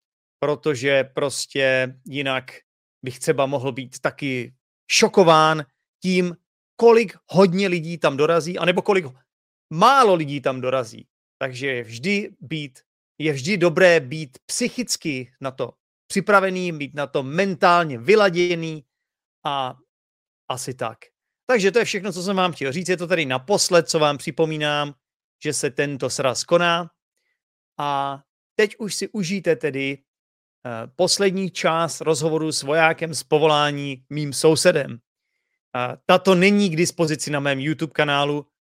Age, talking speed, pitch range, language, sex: 30-49, 135 wpm, 135-175 Hz, Czech, male